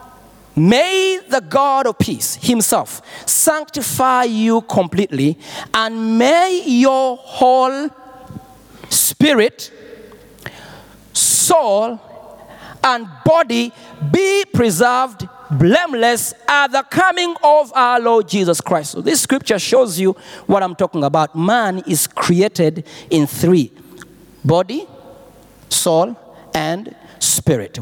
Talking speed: 100 wpm